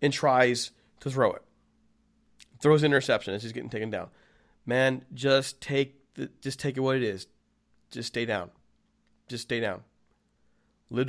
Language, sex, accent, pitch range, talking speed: English, male, American, 120-165 Hz, 155 wpm